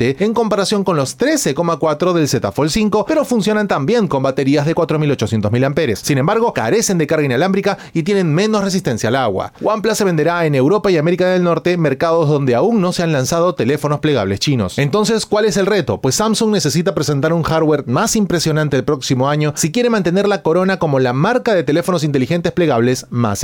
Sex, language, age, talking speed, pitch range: male, Spanish, 30-49, 195 wpm, 140-205 Hz